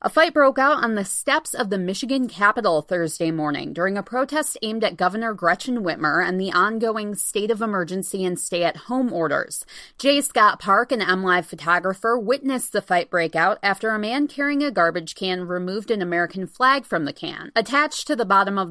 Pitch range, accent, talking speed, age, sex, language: 175-230 Hz, American, 190 wpm, 30-49, female, English